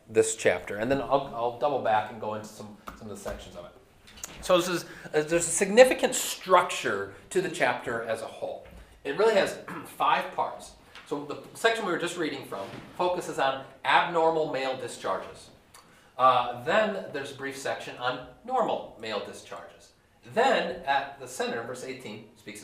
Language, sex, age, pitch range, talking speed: English, male, 40-59, 125-170 Hz, 170 wpm